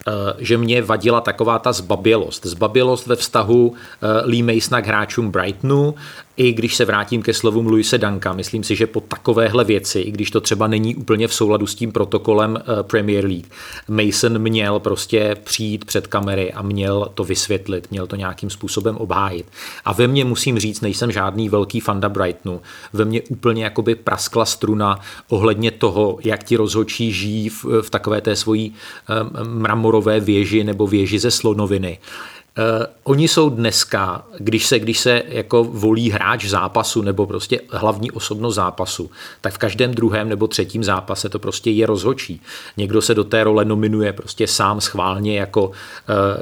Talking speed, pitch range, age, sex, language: 165 wpm, 105-115 Hz, 40-59, male, Czech